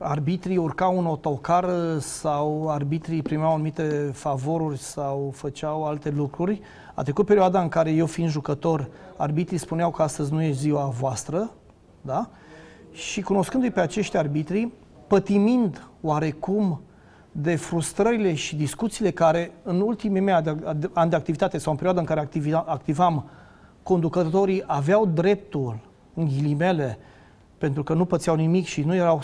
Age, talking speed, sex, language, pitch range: 30-49, 140 wpm, male, Romanian, 155-185 Hz